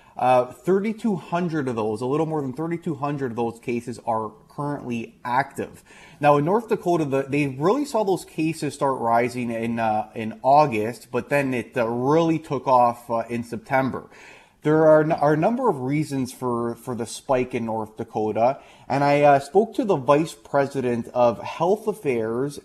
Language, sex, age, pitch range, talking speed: English, male, 30-49, 115-150 Hz, 180 wpm